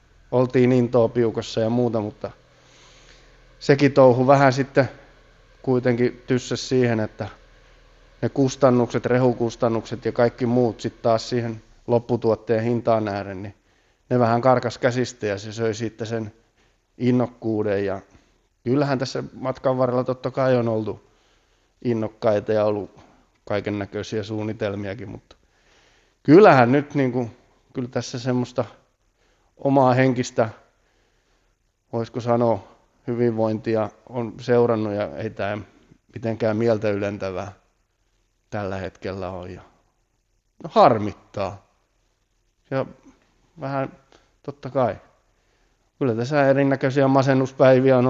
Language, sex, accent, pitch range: Finnish, male, native, 105-125 Hz